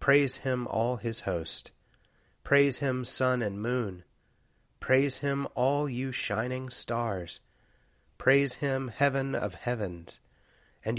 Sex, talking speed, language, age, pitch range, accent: male, 120 wpm, English, 30-49, 105-130 Hz, American